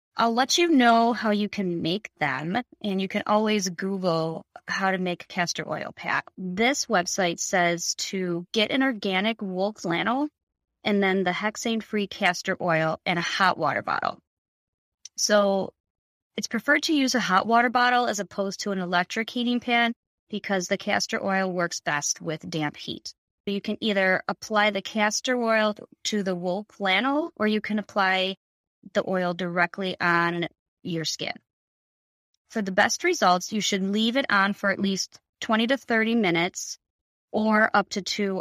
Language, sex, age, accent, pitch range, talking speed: English, female, 20-39, American, 175-215 Hz, 170 wpm